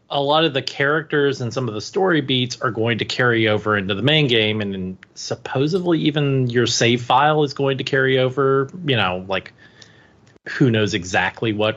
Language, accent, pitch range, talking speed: English, American, 115-150 Hz, 200 wpm